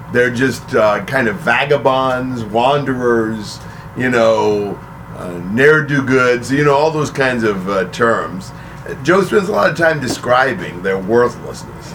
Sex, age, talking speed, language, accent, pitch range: male, 50-69, 150 wpm, English, American, 110-135 Hz